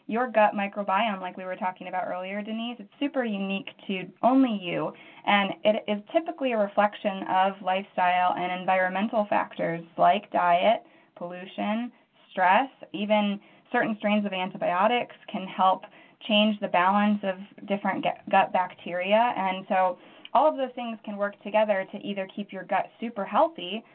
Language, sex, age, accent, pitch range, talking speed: English, female, 20-39, American, 185-215 Hz, 155 wpm